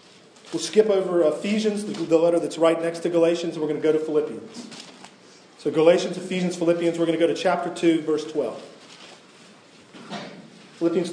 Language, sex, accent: English, male, American